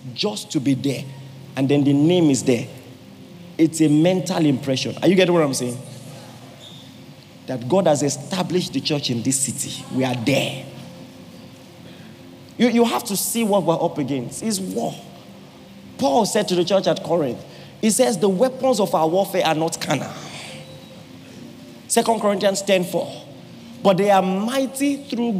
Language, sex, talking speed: English, male, 160 wpm